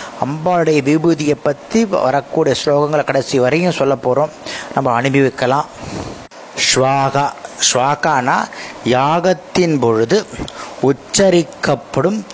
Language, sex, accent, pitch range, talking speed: Tamil, male, native, 135-170 Hz, 80 wpm